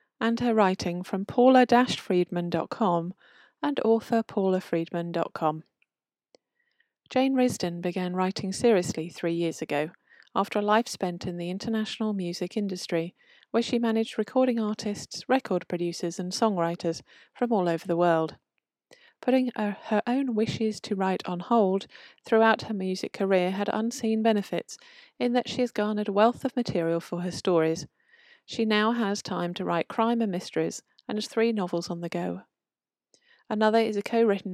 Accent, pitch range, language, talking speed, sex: British, 180-230 Hz, English, 150 wpm, female